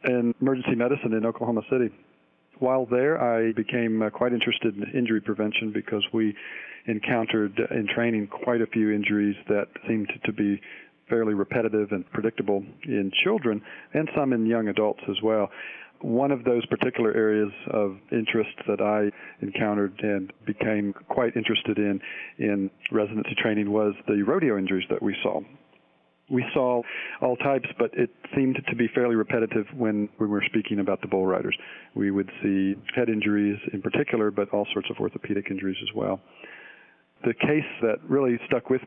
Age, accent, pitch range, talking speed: 50-69, American, 100-115 Hz, 165 wpm